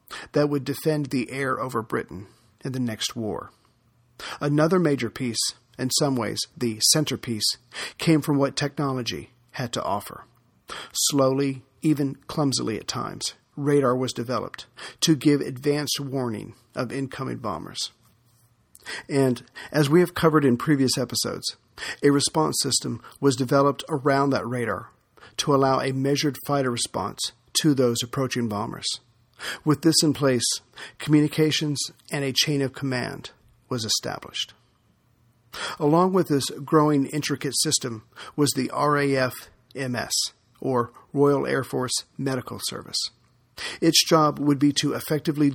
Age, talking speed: 50-69, 130 wpm